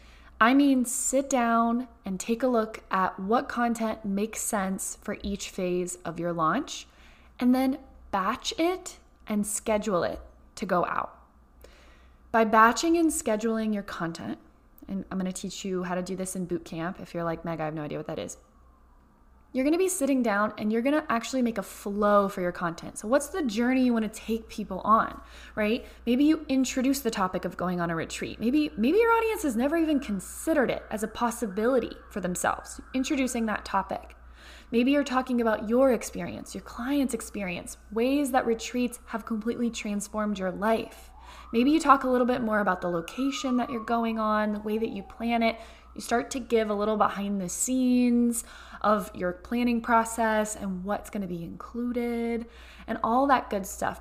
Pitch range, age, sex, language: 195-250 Hz, 20-39, female, English